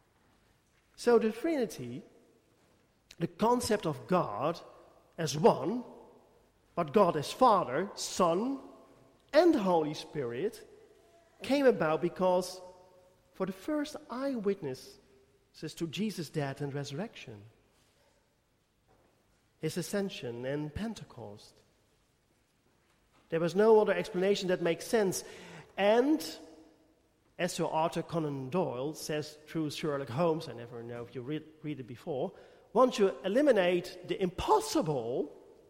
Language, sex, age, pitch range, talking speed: English, male, 50-69, 150-215 Hz, 110 wpm